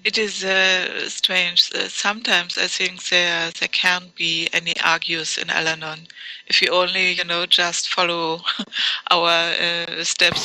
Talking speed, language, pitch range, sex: 145 wpm, English, 170-190 Hz, female